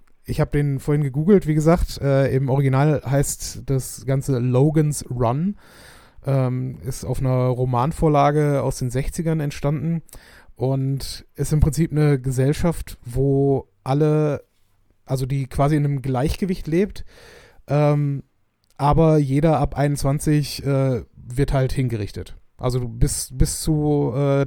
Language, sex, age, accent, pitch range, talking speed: German, male, 30-49, German, 125-145 Hz, 130 wpm